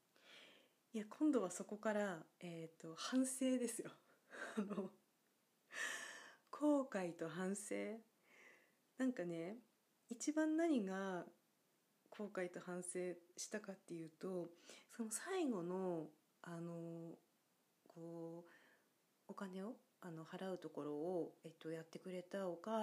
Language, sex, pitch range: Japanese, female, 170-240 Hz